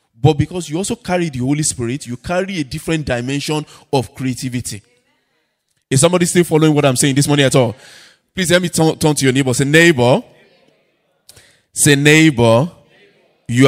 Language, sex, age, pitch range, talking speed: English, male, 20-39, 120-155 Hz, 165 wpm